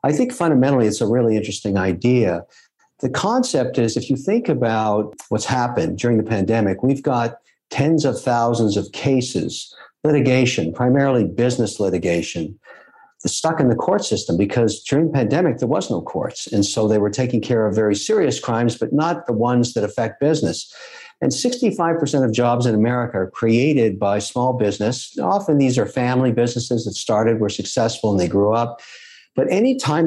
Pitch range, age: 110-140 Hz, 60-79